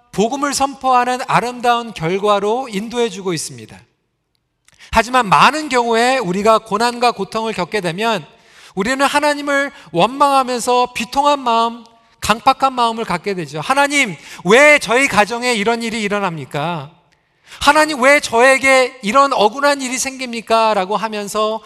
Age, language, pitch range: 40-59, Korean, 175-265 Hz